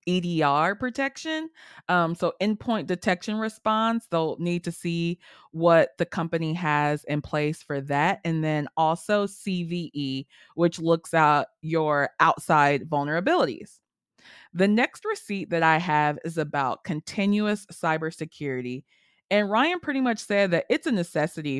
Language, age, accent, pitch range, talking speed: English, 20-39, American, 150-205 Hz, 135 wpm